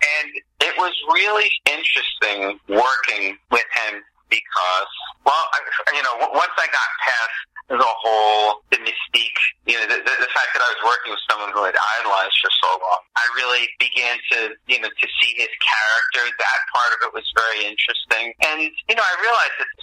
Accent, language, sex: American, English, male